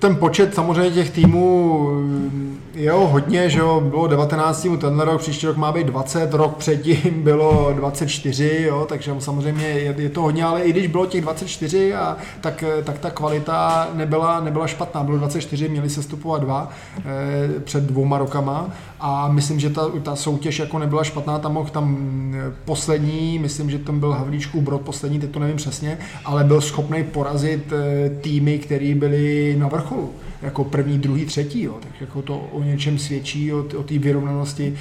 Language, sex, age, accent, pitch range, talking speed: Czech, male, 20-39, native, 140-155 Hz, 170 wpm